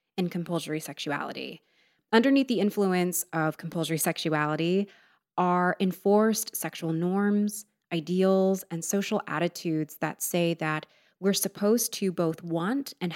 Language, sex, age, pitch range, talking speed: English, female, 20-39, 160-200 Hz, 120 wpm